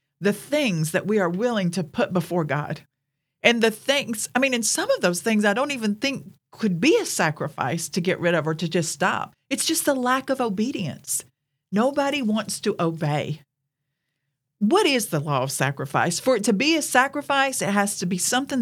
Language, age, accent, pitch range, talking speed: English, 50-69, American, 150-215 Hz, 205 wpm